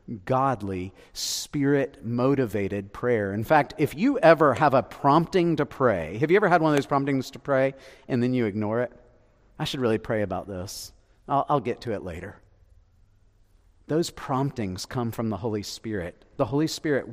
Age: 40-59